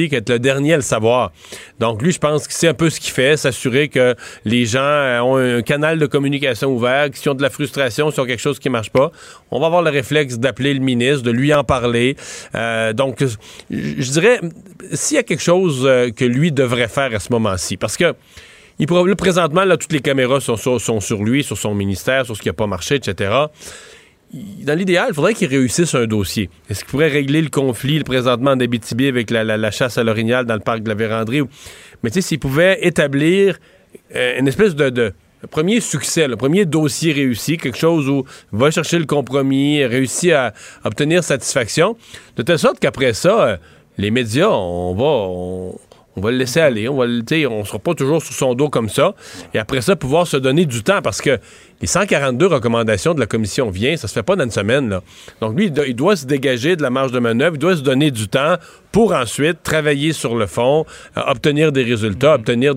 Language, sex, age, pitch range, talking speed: French, male, 30-49, 115-150 Hz, 225 wpm